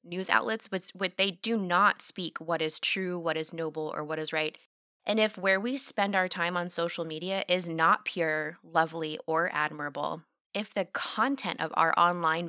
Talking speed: 195 wpm